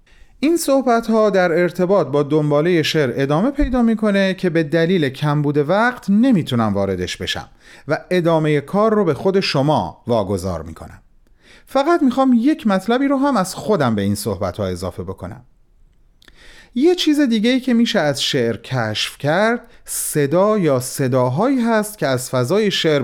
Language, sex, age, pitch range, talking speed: Persian, male, 40-59, 125-205 Hz, 160 wpm